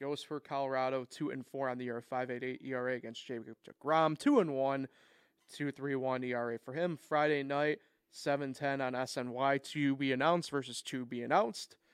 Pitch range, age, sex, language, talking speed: 125-145 Hz, 30-49, male, English, 185 wpm